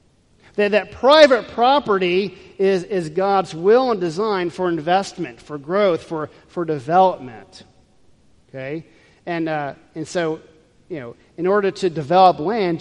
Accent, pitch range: American, 145-185 Hz